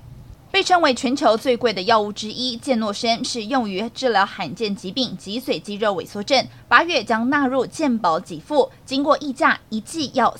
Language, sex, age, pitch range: Chinese, female, 20-39, 210-275 Hz